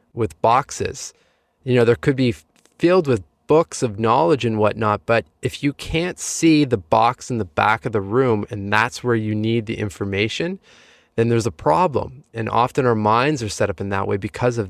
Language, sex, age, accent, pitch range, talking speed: English, male, 20-39, American, 105-120 Hz, 205 wpm